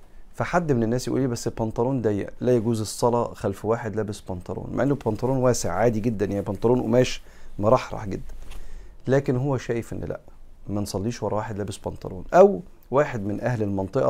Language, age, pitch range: Arabic, 40-59, 100-130 Hz